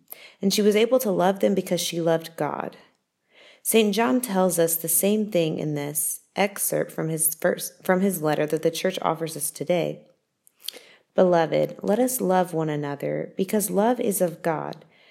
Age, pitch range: 30-49, 160-200 Hz